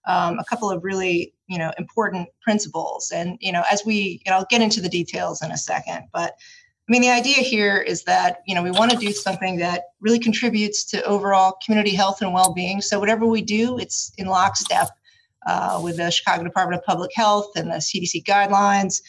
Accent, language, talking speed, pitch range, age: American, English, 210 wpm, 175-210 Hz, 30-49